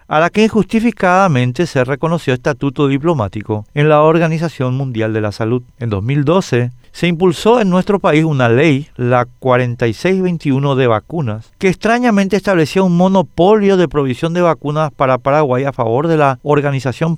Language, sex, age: Spanish, male, 50-69